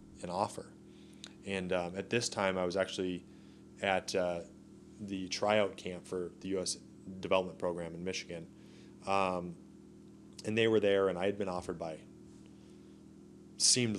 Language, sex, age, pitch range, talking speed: English, male, 30-49, 85-100 Hz, 150 wpm